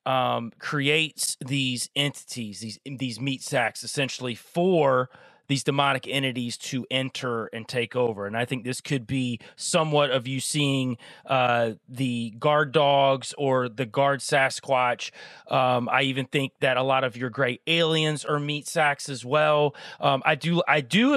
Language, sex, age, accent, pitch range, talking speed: English, male, 30-49, American, 130-155 Hz, 160 wpm